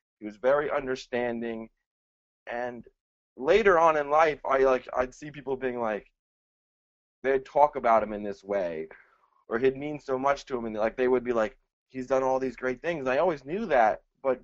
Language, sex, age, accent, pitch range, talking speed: English, male, 20-39, American, 115-145 Hz, 200 wpm